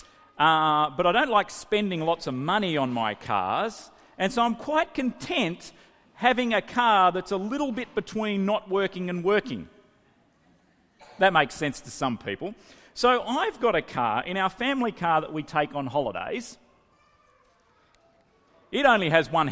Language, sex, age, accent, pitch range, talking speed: English, male, 40-59, Australian, 145-220 Hz, 165 wpm